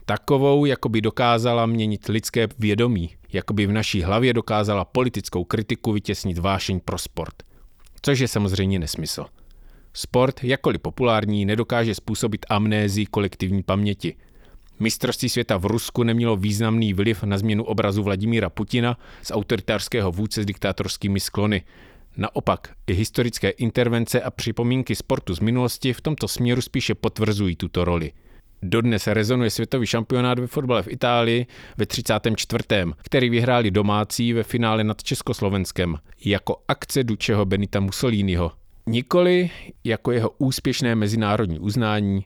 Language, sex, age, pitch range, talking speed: English, male, 30-49, 100-120 Hz, 130 wpm